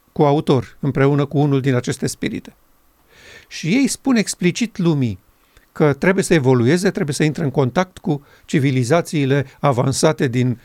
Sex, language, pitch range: male, Romanian, 135-165 Hz